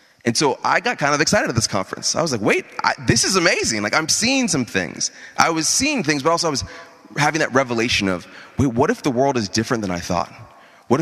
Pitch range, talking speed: 105-150 Hz, 245 wpm